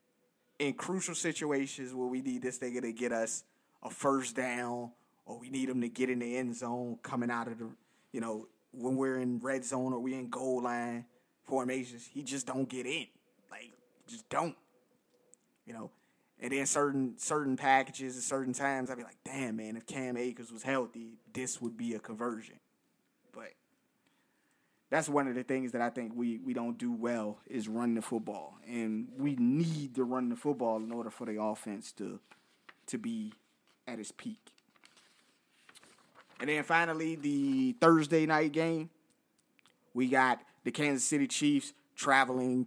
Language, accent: English, American